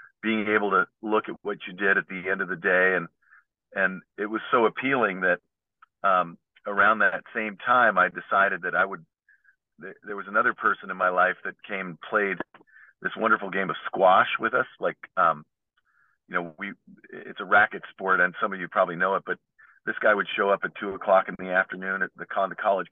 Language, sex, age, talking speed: English, male, 40-59, 210 wpm